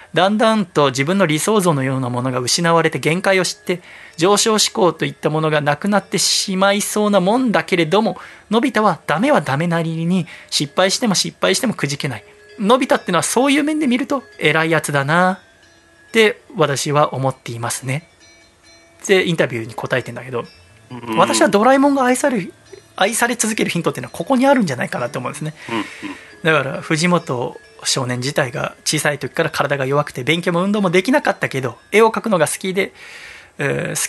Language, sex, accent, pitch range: Japanese, male, native, 150-210 Hz